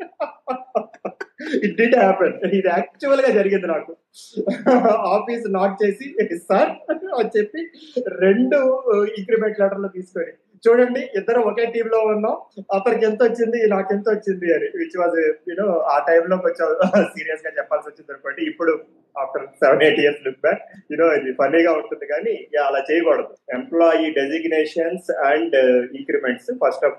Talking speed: 155 wpm